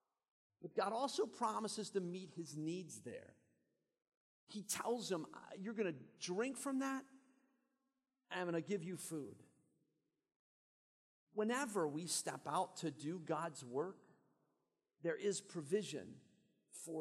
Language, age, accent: English, 40-59, American